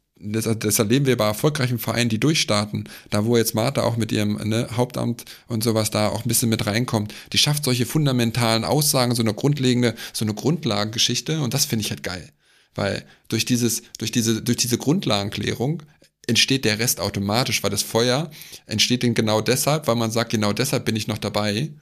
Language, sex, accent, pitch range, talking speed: German, male, German, 110-125 Hz, 195 wpm